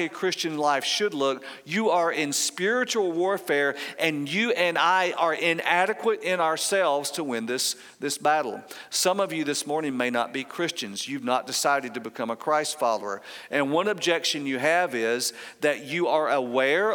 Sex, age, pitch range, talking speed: male, 50-69, 140-175 Hz, 175 wpm